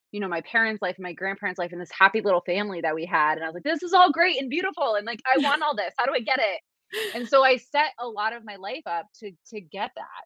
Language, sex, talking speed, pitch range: English, female, 305 wpm, 185-255 Hz